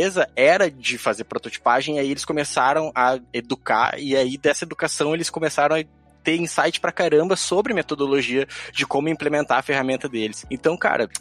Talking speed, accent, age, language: 165 wpm, Brazilian, 20-39, Portuguese